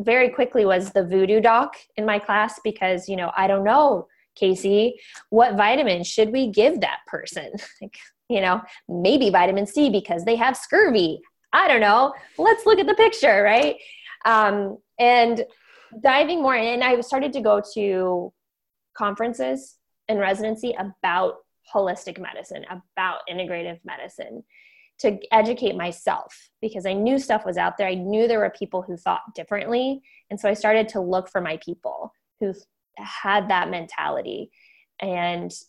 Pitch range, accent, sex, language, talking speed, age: 185-225 Hz, American, female, English, 155 wpm, 20-39